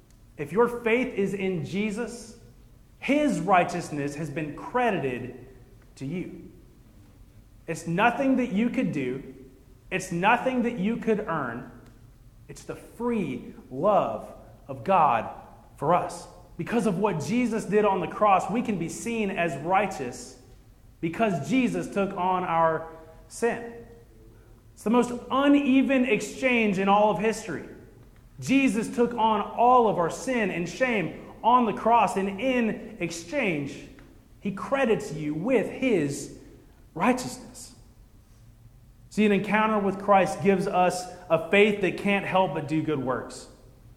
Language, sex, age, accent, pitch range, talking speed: English, male, 30-49, American, 140-220 Hz, 135 wpm